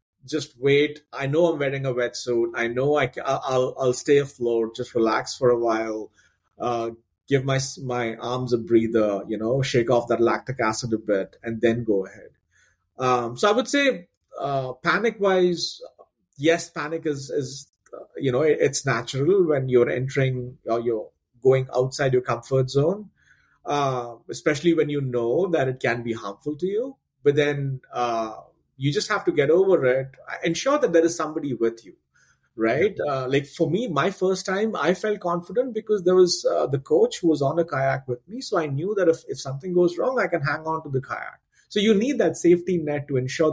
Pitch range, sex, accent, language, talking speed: 125-180 Hz, male, Indian, English, 200 wpm